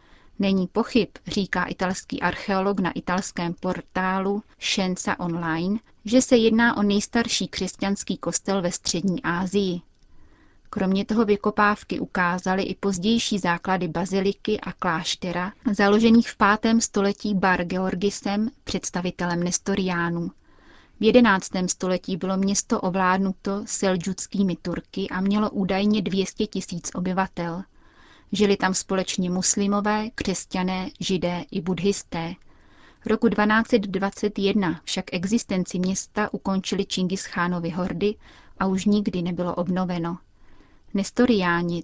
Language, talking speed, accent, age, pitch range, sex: Czech, 110 wpm, native, 30-49, 180-205 Hz, female